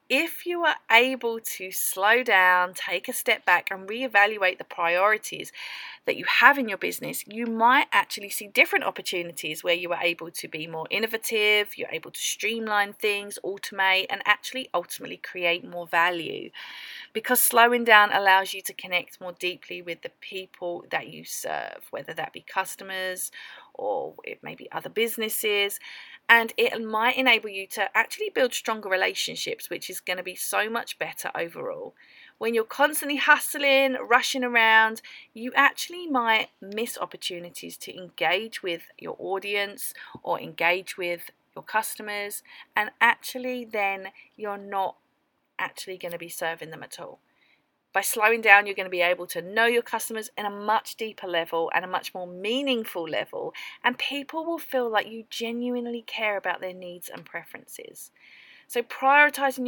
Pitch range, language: 185-245 Hz, English